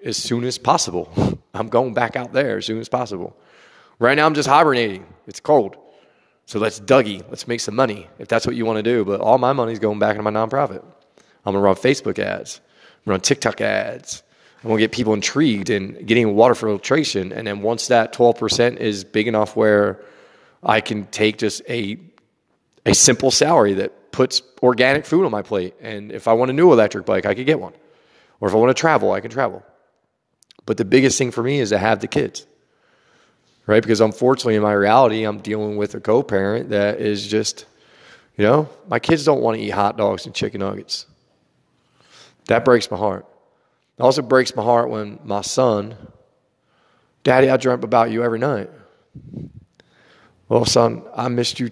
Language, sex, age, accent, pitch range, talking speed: English, male, 30-49, American, 105-125 Hz, 200 wpm